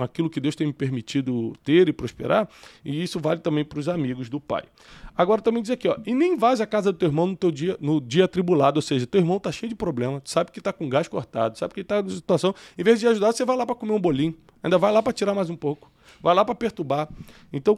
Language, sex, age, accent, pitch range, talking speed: Portuguese, male, 20-39, Brazilian, 140-195 Hz, 265 wpm